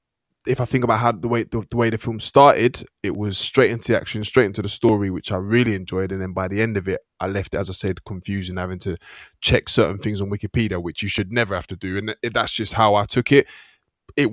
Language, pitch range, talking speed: English, 100-130 Hz, 270 wpm